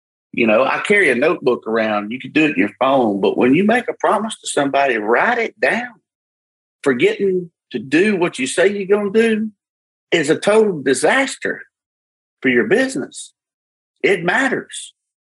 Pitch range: 115-170 Hz